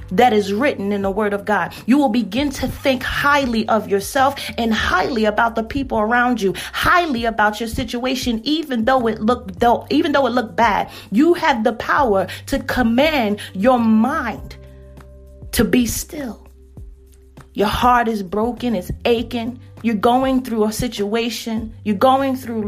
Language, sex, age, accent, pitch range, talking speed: English, female, 40-59, American, 225-270 Hz, 165 wpm